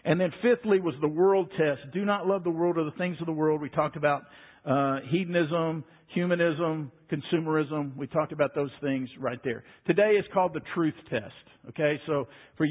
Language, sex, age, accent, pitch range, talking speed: English, male, 50-69, American, 145-185 Hz, 195 wpm